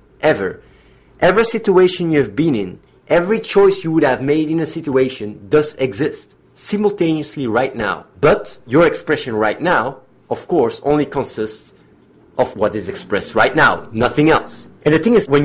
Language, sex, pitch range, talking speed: English, male, 120-155 Hz, 165 wpm